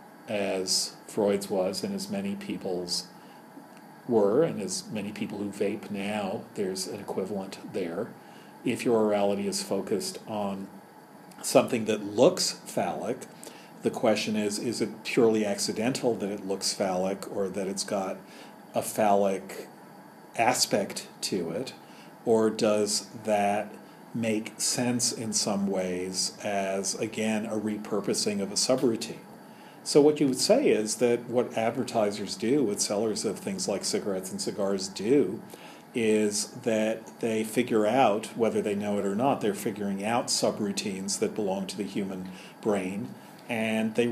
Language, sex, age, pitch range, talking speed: English, male, 40-59, 100-115 Hz, 145 wpm